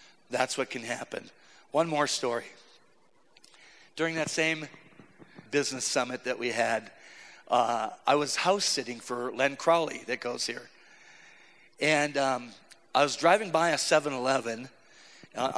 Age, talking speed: 40-59, 140 wpm